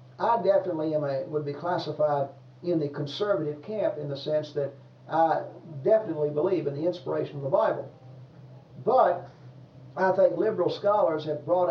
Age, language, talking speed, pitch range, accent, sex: 50-69, English, 150 wpm, 135-165 Hz, American, male